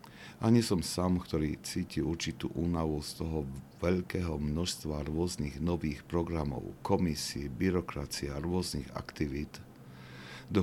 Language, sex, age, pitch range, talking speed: Slovak, male, 50-69, 75-90 Hz, 120 wpm